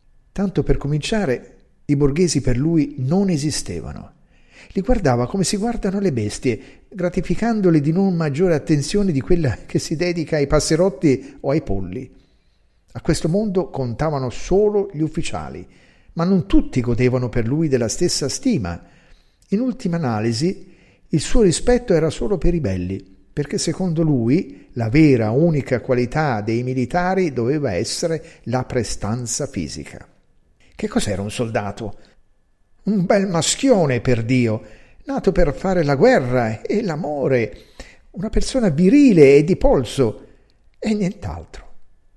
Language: Italian